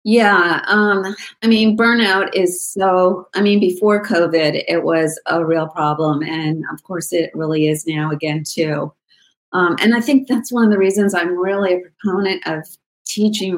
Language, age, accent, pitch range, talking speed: English, 30-49, American, 165-200 Hz, 175 wpm